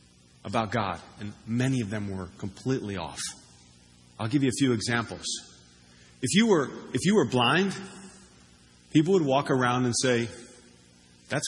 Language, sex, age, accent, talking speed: English, male, 40-59, American, 150 wpm